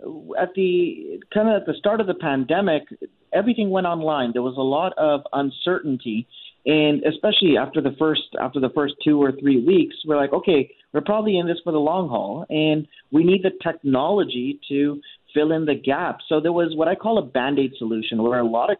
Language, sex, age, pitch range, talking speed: English, male, 30-49, 135-170 Hz, 210 wpm